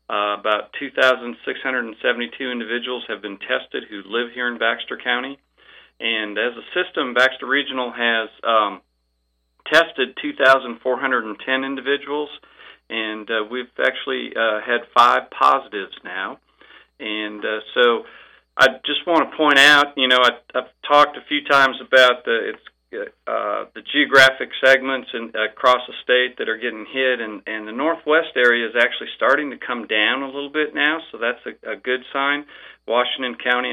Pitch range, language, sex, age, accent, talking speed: 115-135 Hz, English, male, 40-59, American, 155 wpm